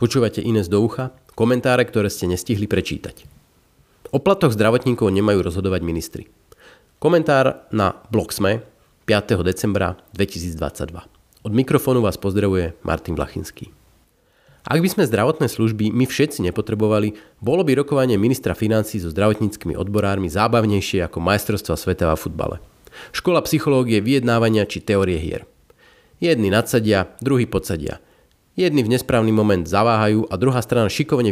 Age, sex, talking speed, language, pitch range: 30-49, male, 130 wpm, Slovak, 95-125 Hz